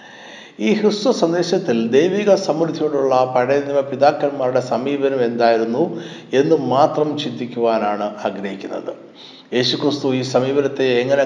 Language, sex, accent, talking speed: Malayalam, male, native, 100 wpm